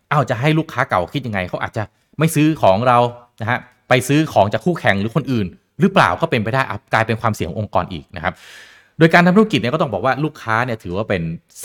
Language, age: Thai, 20-39